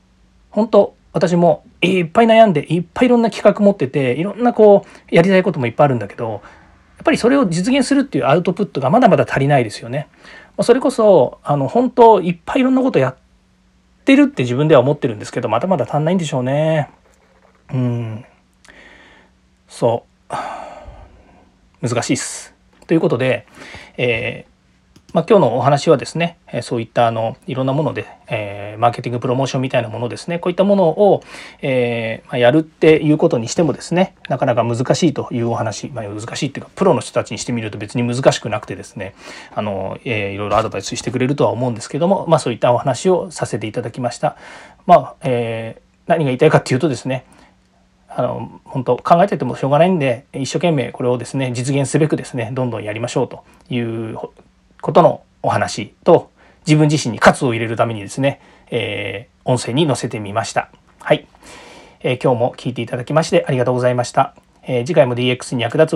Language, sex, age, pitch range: Japanese, male, 40-59, 120-170 Hz